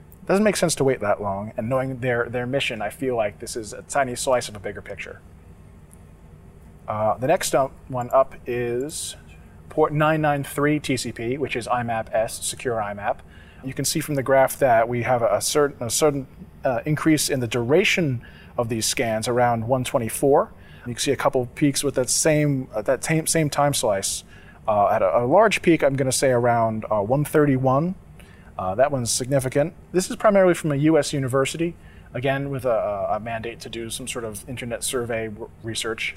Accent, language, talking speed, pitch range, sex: American, English, 195 wpm, 110-145 Hz, male